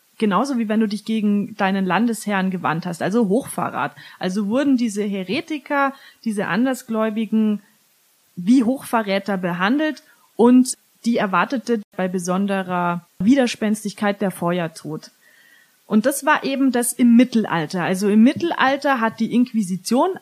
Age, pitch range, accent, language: 30-49, 205-260 Hz, German, German